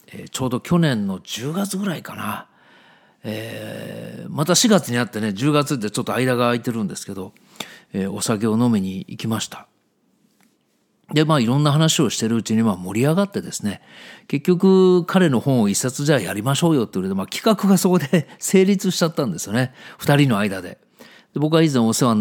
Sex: male